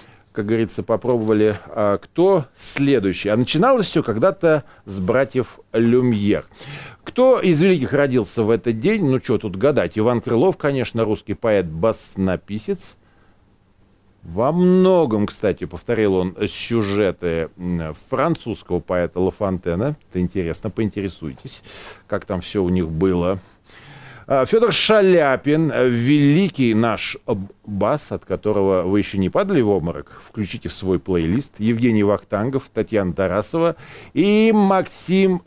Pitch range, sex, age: 100-140 Hz, male, 40-59